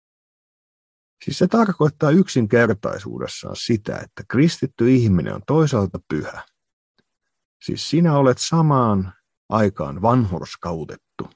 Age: 50-69